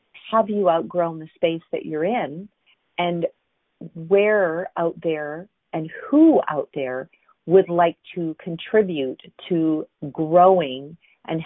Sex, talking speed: female, 120 wpm